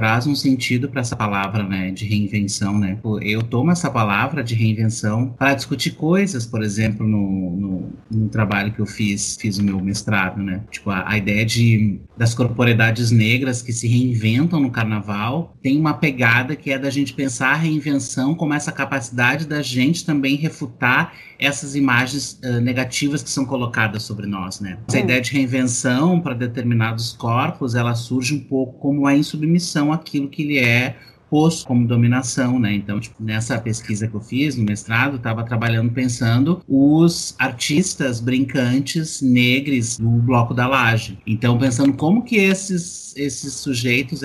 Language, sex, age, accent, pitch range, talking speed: Portuguese, male, 30-49, Brazilian, 115-140 Hz, 165 wpm